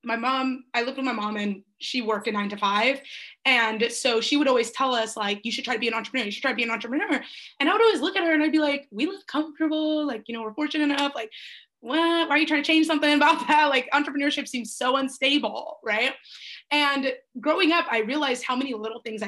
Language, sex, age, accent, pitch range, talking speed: English, female, 20-39, American, 225-300 Hz, 255 wpm